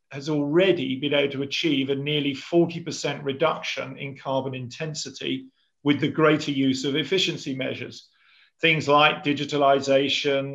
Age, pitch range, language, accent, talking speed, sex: 40-59, 135-160 Hz, English, British, 130 wpm, male